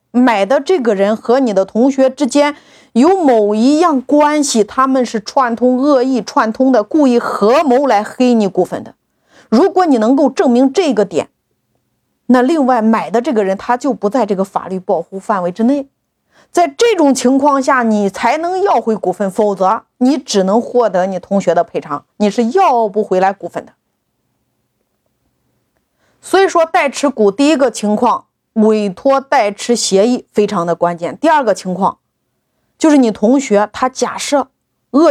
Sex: female